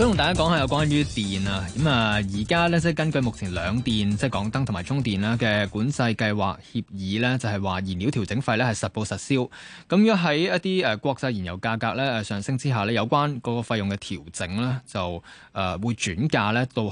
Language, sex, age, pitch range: Chinese, male, 20-39, 100-145 Hz